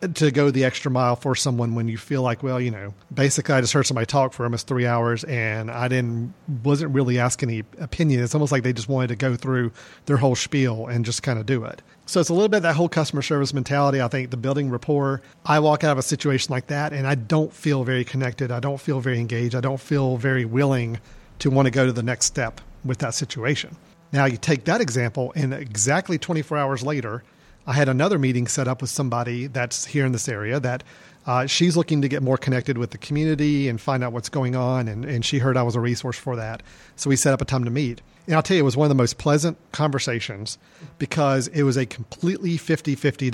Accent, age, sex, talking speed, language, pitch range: American, 40-59, male, 245 wpm, English, 125-145 Hz